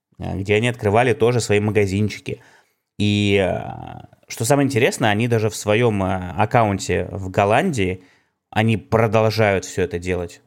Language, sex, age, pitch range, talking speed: Russian, male, 20-39, 95-115 Hz, 125 wpm